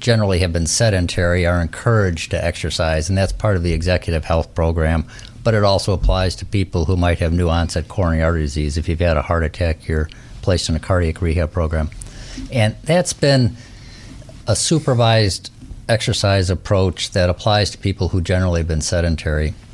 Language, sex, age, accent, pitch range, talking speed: English, male, 50-69, American, 85-110 Hz, 180 wpm